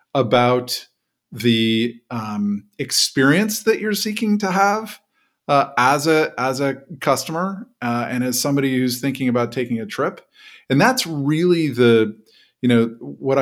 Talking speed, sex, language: 145 wpm, male, English